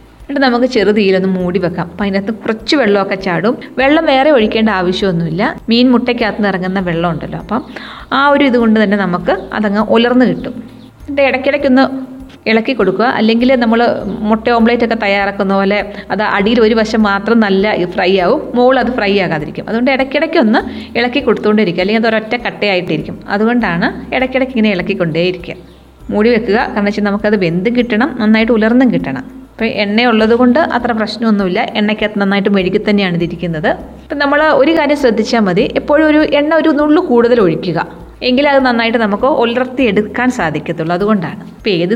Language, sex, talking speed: Malayalam, female, 145 wpm